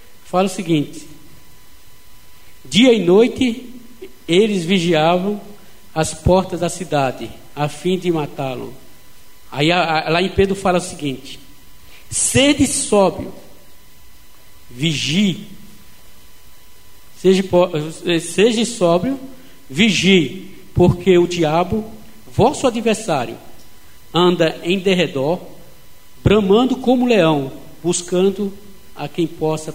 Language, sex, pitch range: Portuguese, male, 155-220 Hz